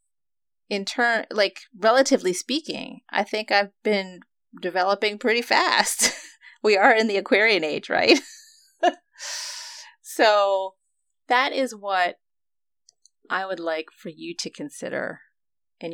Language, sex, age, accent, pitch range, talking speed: English, female, 30-49, American, 185-255 Hz, 115 wpm